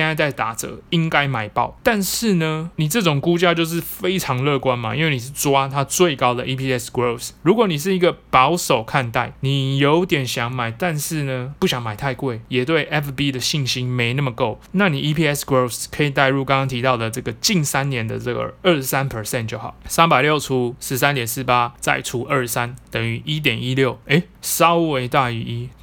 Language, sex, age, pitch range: Chinese, male, 20-39, 130-165 Hz